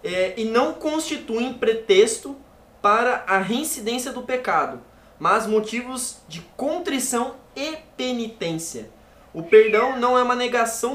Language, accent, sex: Portuguese, Brazilian, male